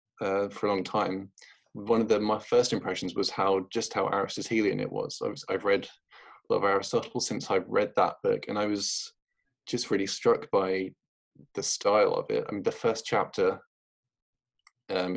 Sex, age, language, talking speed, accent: male, 20-39, English, 190 wpm, British